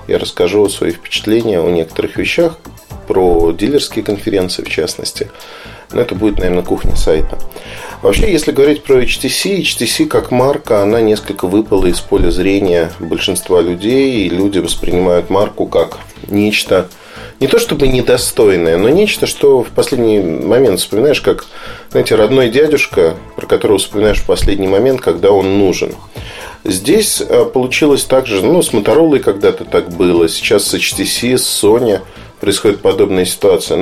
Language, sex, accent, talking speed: Russian, male, native, 145 wpm